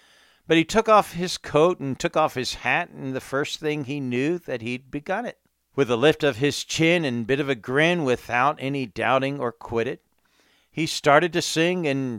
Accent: American